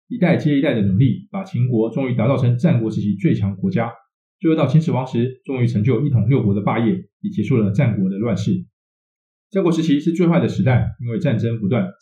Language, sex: Chinese, male